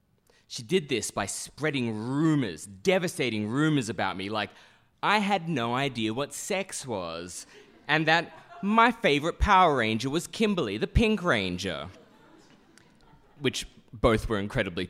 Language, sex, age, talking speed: English, male, 20-39, 135 wpm